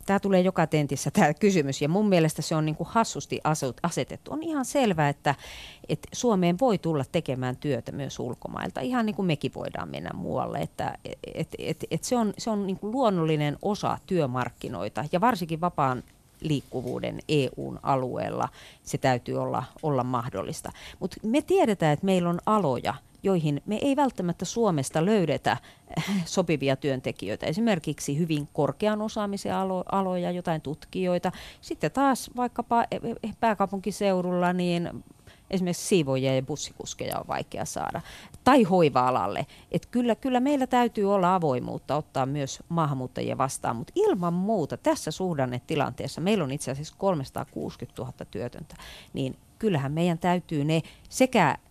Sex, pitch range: female, 140-205 Hz